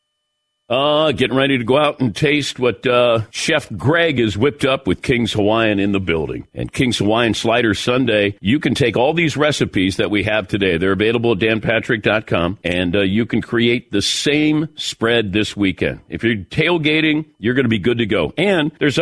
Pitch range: 105-135 Hz